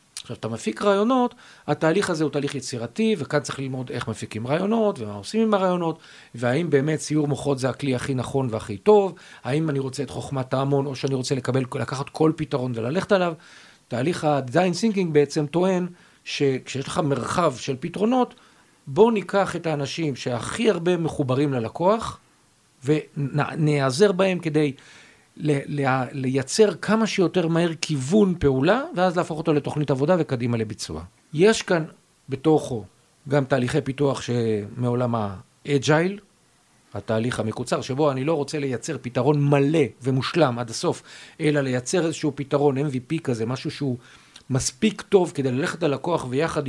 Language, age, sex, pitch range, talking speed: Hebrew, 50-69, male, 130-170 Hz, 145 wpm